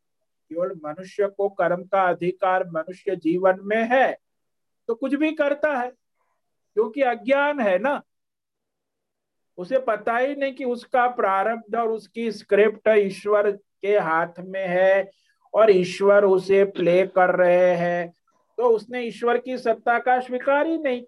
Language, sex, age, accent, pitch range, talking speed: Hindi, male, 50-69, native, 190-255 Hz, 140 wpm